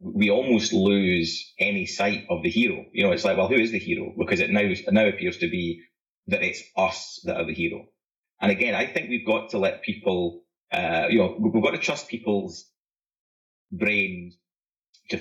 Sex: male